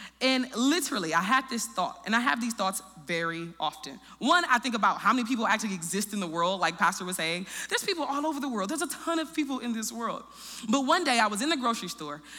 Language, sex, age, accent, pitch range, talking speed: English, female, 20-39, American, 200-280 Hz, 250 wpm